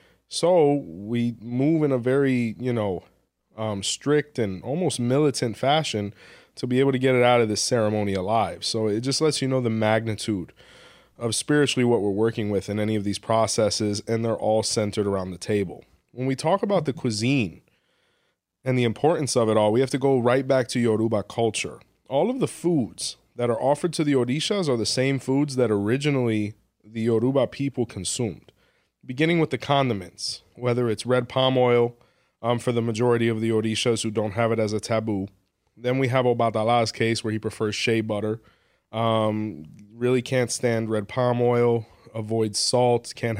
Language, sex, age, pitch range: English, male, 20-39, 110-125 Hz